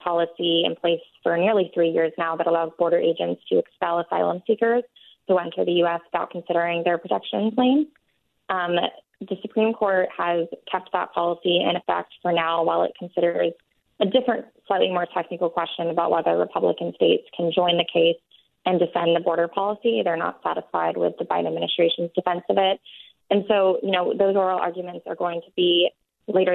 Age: 20-39